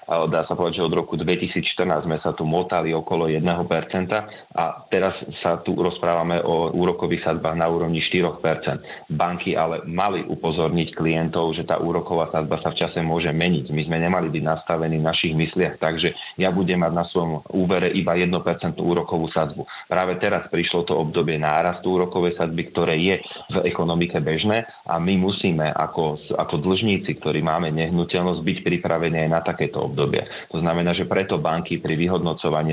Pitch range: 80-90 Hz